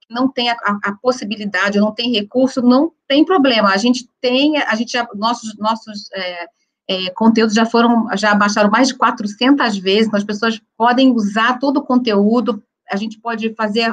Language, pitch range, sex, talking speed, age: Portuguese, 210-265 Hz, female, 180 wpm, 40-59